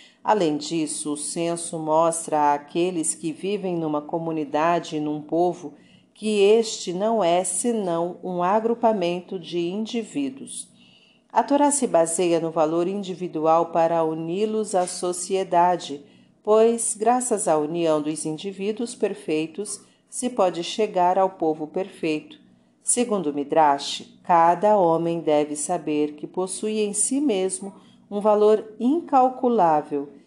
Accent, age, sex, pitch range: Brazilian, 40-59, female, 165-215 Hz